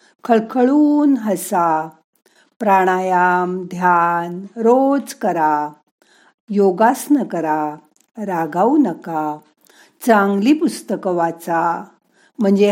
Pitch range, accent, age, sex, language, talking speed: 170-235 Hz, native, 50-69, female, Marathi, 65 wpm